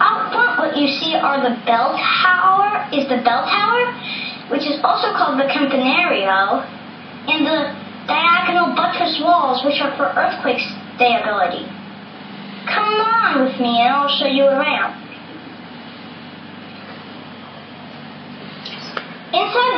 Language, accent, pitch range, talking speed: English, American, 240-320 Hz, 120 wpm